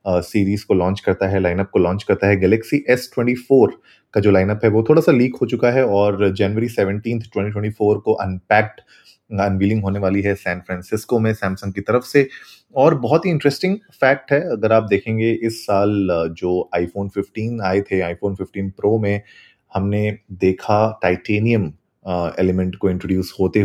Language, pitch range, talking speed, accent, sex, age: Hindi, 95-115 Hz, 185 wpm, native, male, 30-49